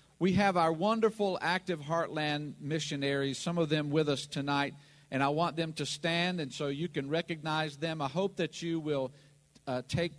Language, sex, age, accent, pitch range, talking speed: English, male, 50-69, American, 145-185 Hz, 190 wpm